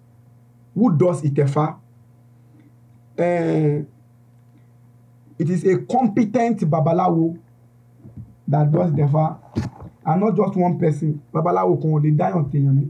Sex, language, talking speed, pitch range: male, English, 110 wpm, 135-180 Hz